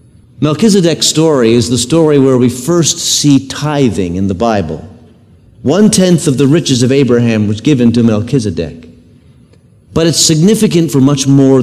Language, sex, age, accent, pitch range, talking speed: English, male, 50-69, American, 115-165 Hz, 150 wpm